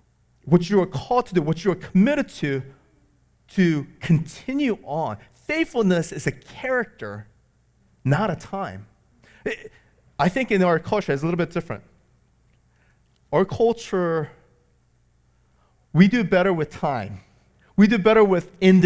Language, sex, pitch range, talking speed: English, male, 120-200 Hz, 140 wpm